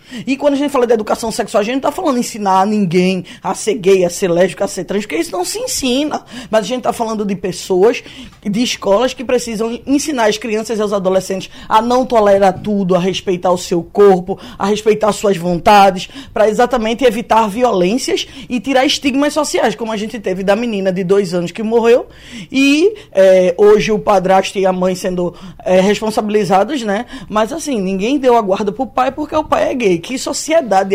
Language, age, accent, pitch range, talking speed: Portuguese, 20-39, Brazilian, 190-255 Hz, 205 wpm